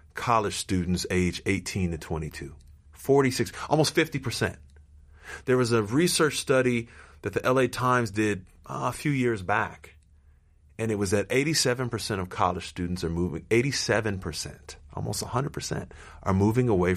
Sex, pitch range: male, 85-115 Hz